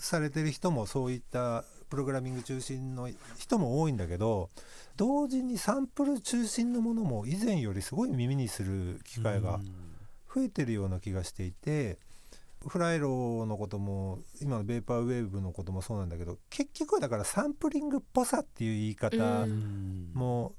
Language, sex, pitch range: Japanese, male, 100-145 Hz